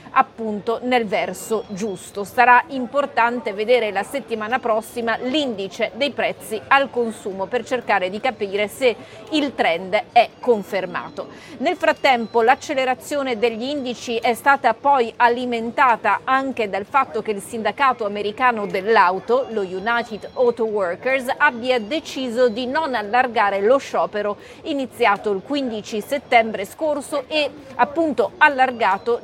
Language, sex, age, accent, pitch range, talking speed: Italian, female, 40-59, native, 205-255 Hz, 125 wpm